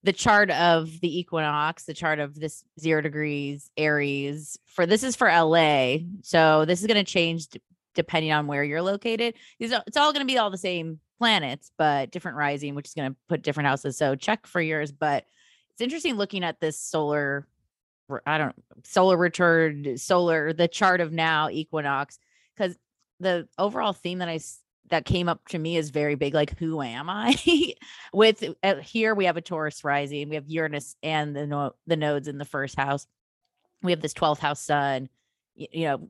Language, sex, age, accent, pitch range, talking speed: English, female, 20-39, American, 145-180 Hz, 195 wpm